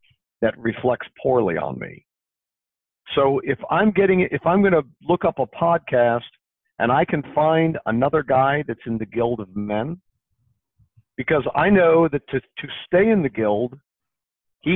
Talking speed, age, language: 165 wpm, 50-69, English